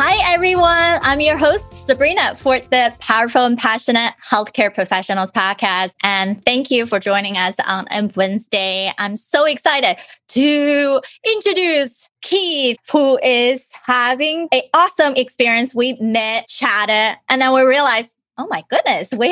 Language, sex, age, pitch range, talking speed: English, female, 20-39, 205-285 Hz, 140 wpm